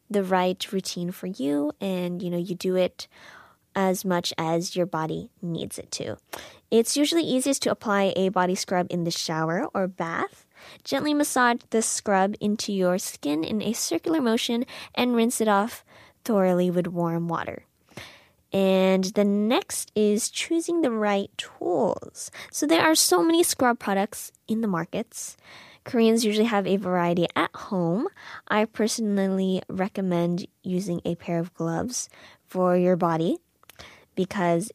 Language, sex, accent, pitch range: Korean, female, American, 180-230 Hz